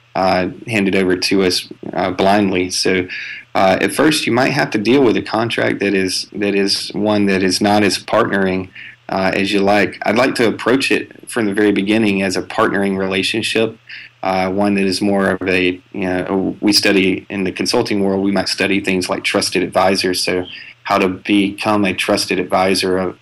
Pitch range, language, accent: 90-100 Hz, English, American